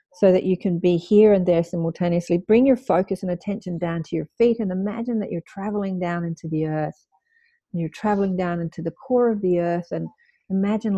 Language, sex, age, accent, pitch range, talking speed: English, female, 40-59, Australian, 175-215 Hz, 215 wpm